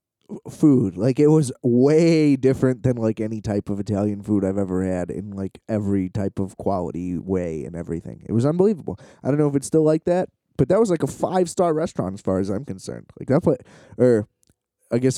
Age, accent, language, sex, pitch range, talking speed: 20-39, American, English, male, 110-145 Hz, 215 wpm